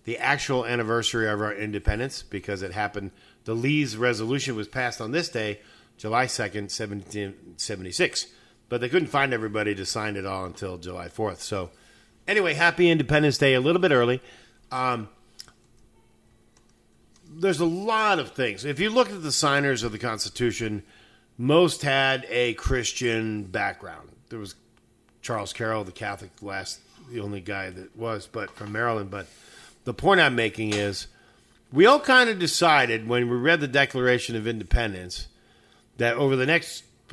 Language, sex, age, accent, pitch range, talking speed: English, male, 40-59, American, 105-135 Hz, 160 wpm